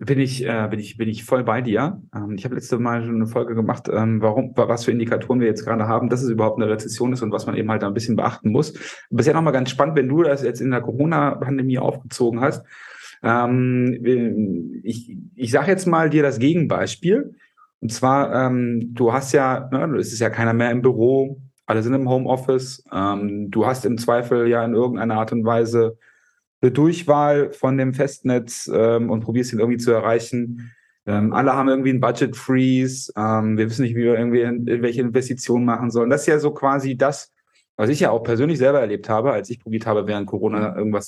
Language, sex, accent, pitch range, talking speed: German, male, German, 115-135 Hz, 205 wpm